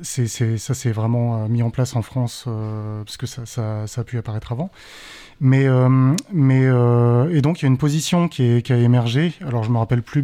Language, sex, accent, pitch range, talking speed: French, male, French, 120-145 Hz, 240 wpm